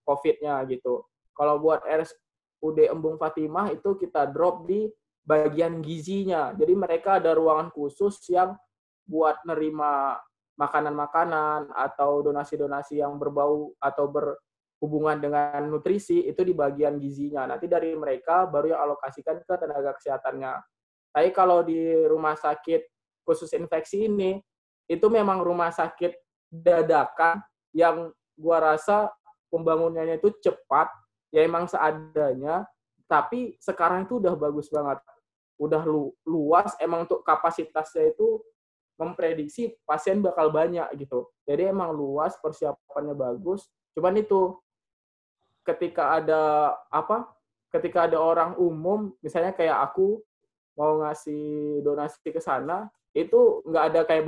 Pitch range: 150-180 Hz